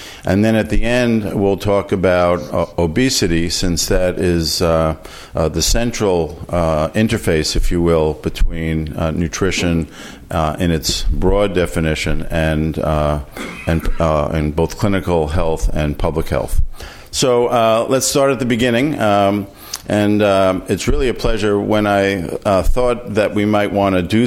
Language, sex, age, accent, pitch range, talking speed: English, male, 50-69, American, 80-100 Hz, 160 wpm